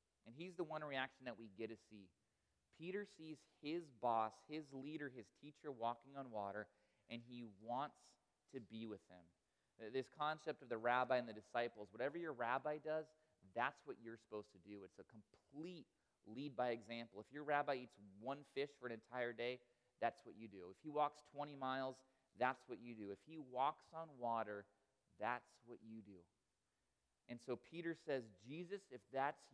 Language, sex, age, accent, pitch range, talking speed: English, male, 30-49, American, 110-145 Hz, 185 wpm